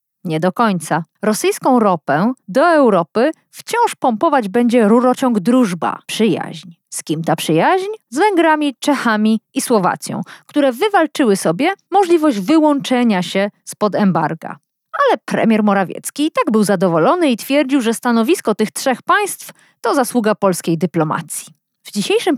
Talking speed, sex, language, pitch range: 130 wpm, female, Polish, 175-290 Hz